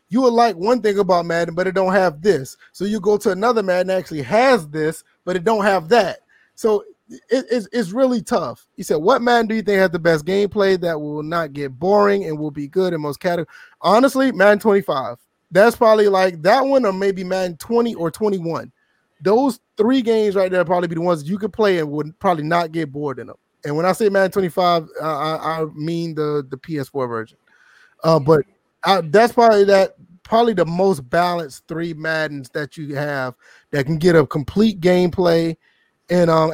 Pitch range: 160-205 Hz